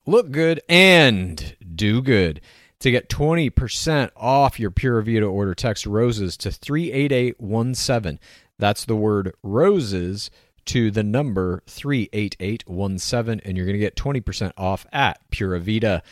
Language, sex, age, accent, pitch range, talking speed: English, male, 40-59, American, 100-135 Hz, 130 wpm